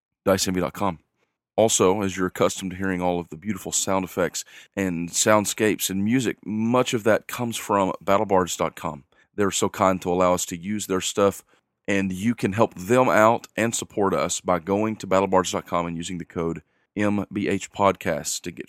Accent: American